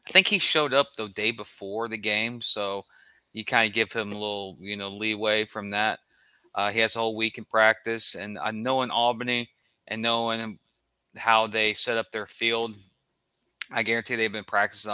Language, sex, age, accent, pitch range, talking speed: English, male, 20-39, American, 105-115 Hz, 195 wpm